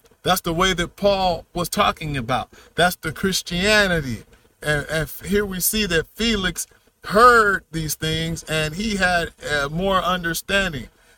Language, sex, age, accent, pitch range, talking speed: English, male, 40-59, American, 150-200 Hz, 145 wpm